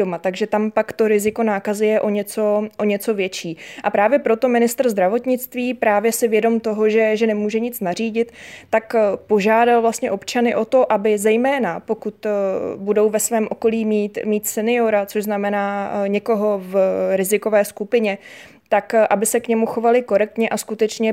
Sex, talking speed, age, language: female, 165 wpm, 20-39, Czech